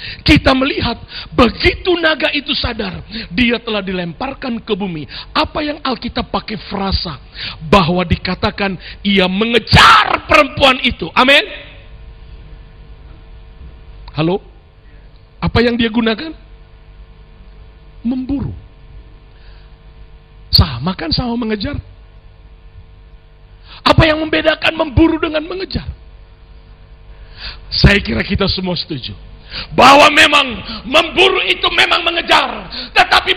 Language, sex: Indonesian, male